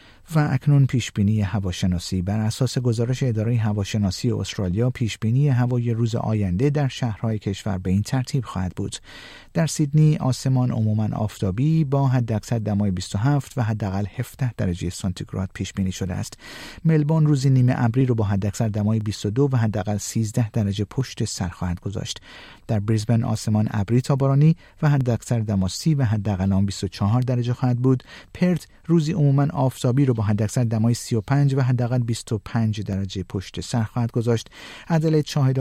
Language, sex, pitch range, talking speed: Persian, male, 105-130 Hz, 150 wpm